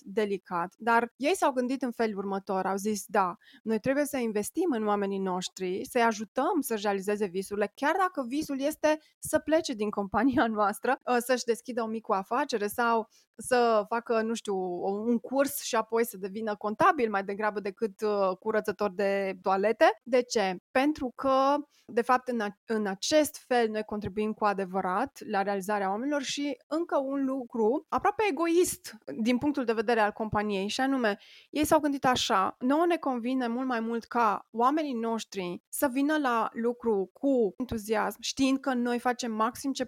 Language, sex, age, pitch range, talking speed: Romanian, female, 20-39, 210-275 Hz, 165 wpm